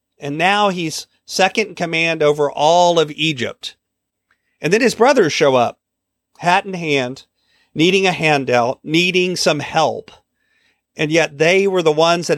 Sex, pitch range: male, 150-215 Hz